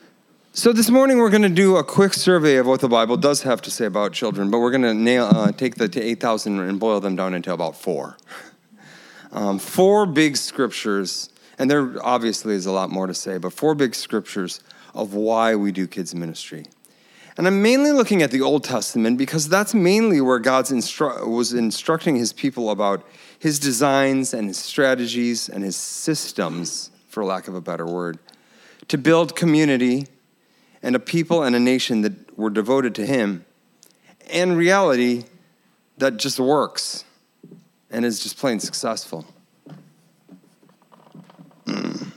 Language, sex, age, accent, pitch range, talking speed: English, male, 30-49, American, 105-160 Hz, 165 wpm